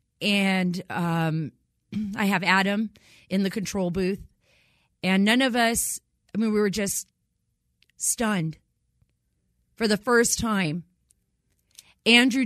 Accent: American